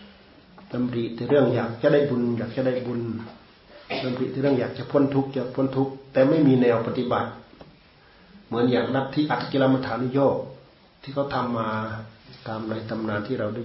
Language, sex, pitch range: Thai, male, 110-135 Hz